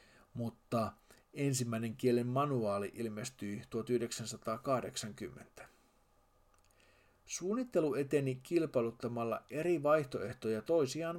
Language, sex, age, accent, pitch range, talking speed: Finnish, male, 50-69, native, 115-145 Hz, 65 wpm